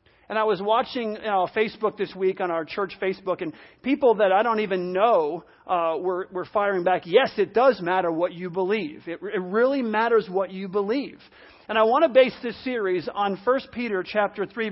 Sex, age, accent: male, 40-59, American